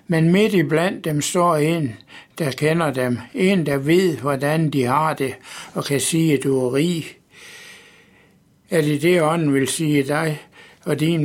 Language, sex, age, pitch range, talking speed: Danish, male, 60-79, 135-160 Hz, 175 wpm